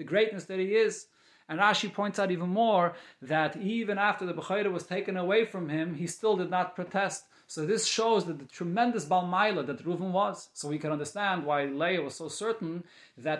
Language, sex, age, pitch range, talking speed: English, male, 30-49, 150-185 Hz, 205 wpm